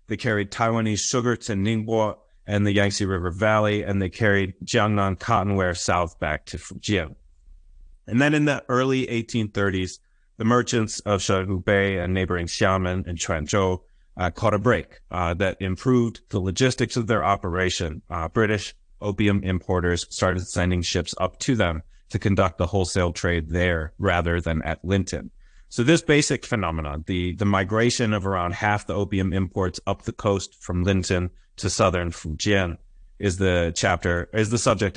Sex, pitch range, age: male, 90-105 Hz, 30-49